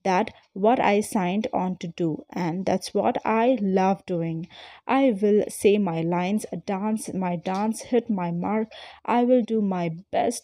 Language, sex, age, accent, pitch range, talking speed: English, female, 30-49, Indian, 180-230 Hz, 165 wpm